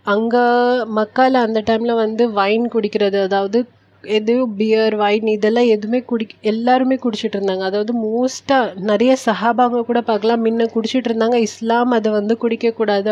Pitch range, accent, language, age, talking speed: 205-235 Hz, native, Tamil, 30-49, 135 wpm